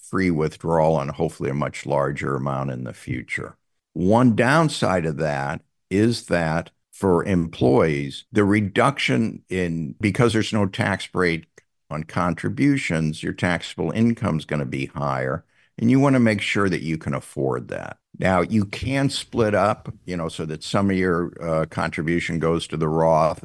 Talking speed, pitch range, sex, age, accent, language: 170 wpm, 80-105 Hz, male, 60-79, American, English